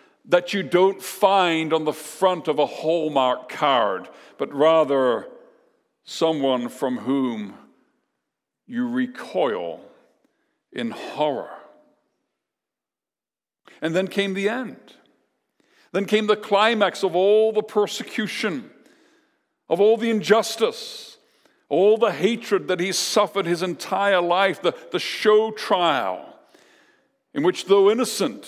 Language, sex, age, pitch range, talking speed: English, male, 60-79, 175-220 Hz, 115 wpm